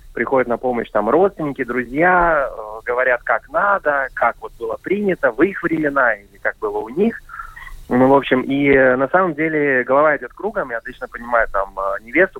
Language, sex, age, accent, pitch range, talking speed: Russian, male, 20-39, native, 120-150 Hz, 190 wpm